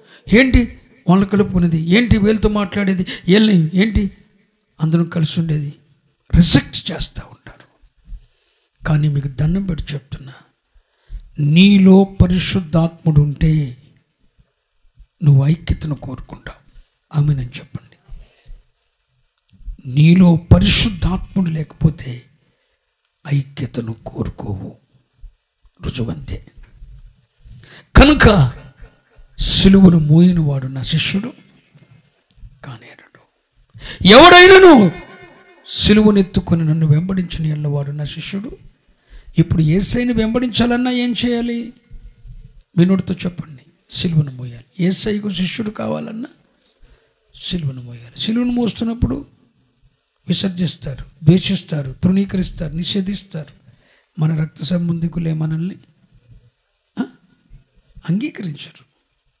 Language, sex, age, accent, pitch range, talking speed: Telugu, male, 60-79, native, 140-190 Hz, 80 wpm